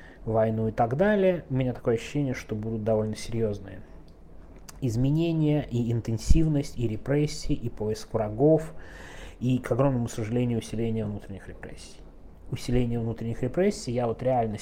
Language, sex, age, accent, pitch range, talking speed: Russian, male, 20-39, native, 100-120 Hz, 135 wpm